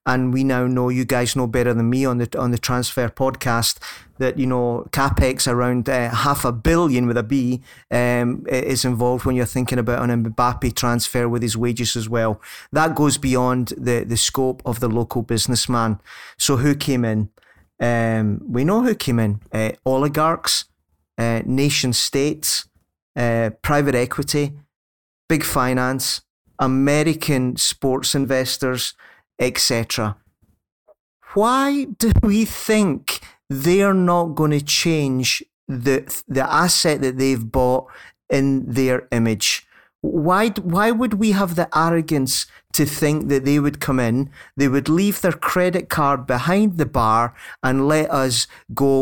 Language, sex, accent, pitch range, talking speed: English, male, British, 120-145 Hz, 150 wpm